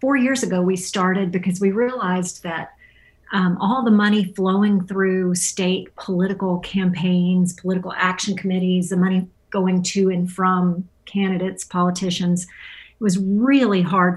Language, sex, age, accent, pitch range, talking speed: English, female, 40-59, American, 180-200 Hz, 140 wpm